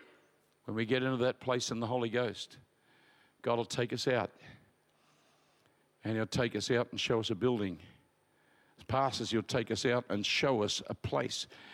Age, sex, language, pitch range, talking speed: 50-69, male, English, 115-140 Hz, 185 wpm